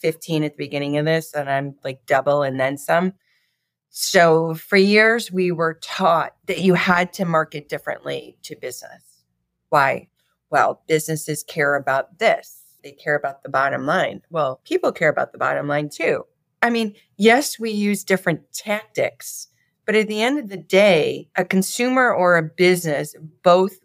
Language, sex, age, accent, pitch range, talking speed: English, female, 40-59, American, 145-195 Hz, 170 wpm